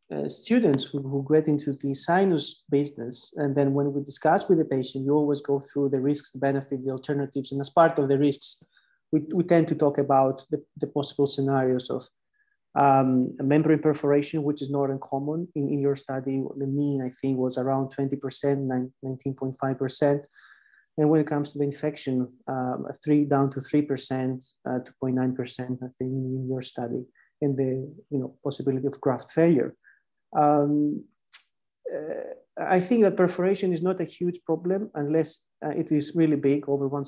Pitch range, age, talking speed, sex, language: 135-155 Hz, 30-49, 180 wpm, male, English